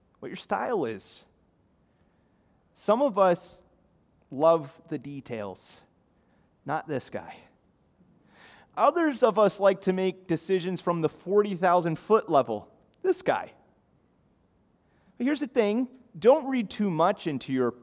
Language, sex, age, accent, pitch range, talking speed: English, male, 30-49, American, 110-170 Hz, 125 wpm